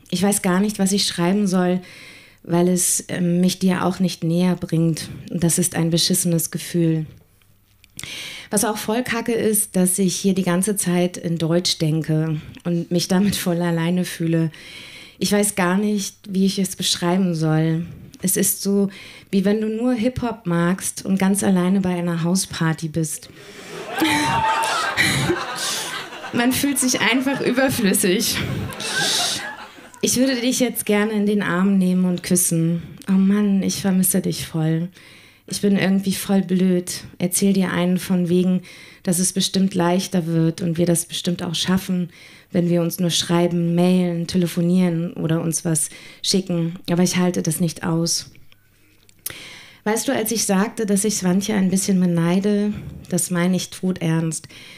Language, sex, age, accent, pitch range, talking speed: German, female, 20-39, German, 170-195 Hz, 160 wpm